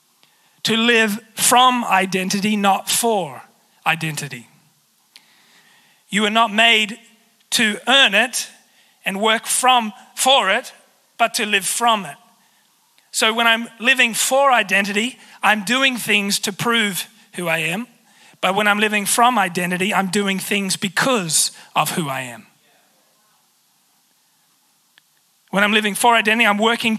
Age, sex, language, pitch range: 30-49, male, English, 190-235 Hz